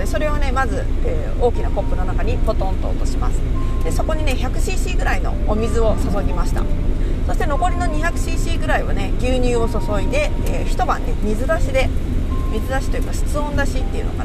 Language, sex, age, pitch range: Japanese, female, 40-59, 85-95 Hz